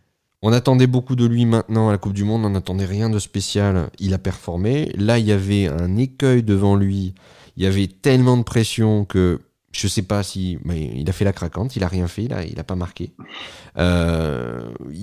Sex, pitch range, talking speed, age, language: male, 90-115 Hz, 220 wpm, 30-49, French